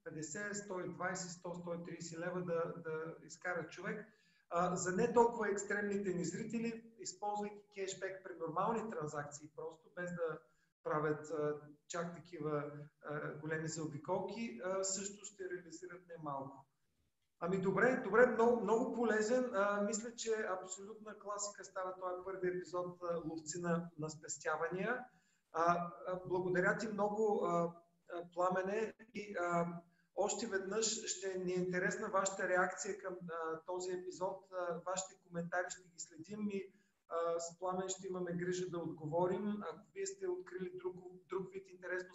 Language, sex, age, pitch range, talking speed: Bulgarian, male, 40-59, 170-195 Hz, 135 wpm